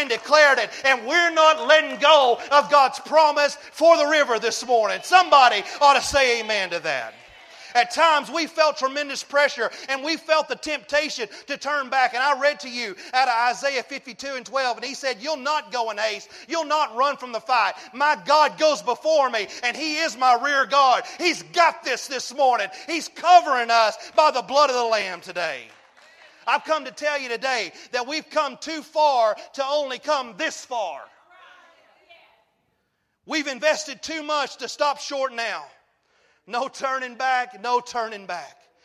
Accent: American